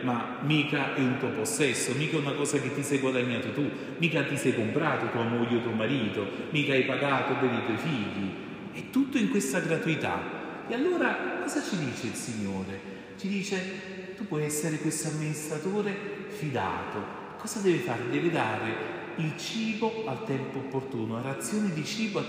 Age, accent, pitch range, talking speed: 40-59, native, 120-160 Hz, 180 wpm